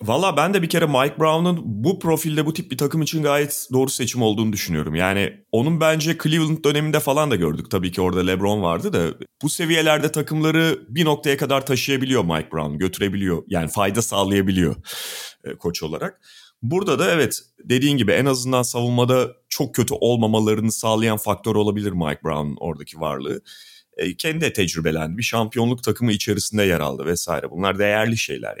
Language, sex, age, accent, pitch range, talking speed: Turkish, male, 30-49, native, 100-145 Hz, 170 wpm